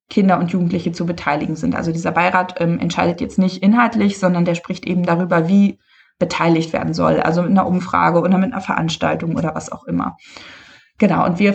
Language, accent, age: German, German, 20-39